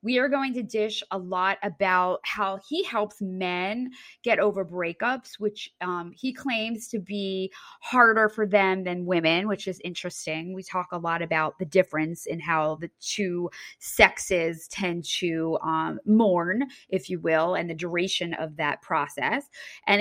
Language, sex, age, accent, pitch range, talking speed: English, female, 20-39, American, 175-220 Hz, 165 wpm